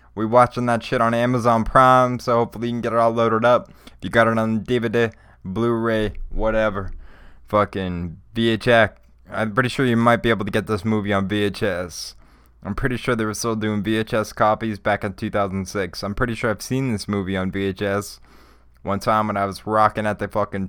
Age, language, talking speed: 20-39, English, 200 wpm